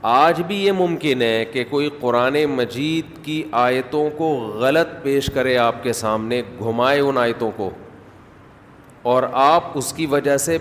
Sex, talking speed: male, 160 wpm